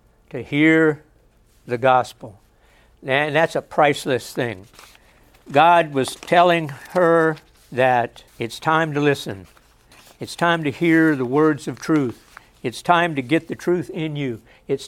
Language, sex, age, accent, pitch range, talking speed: English, male, 60-79, American, 130-160 Hz, 140 wpm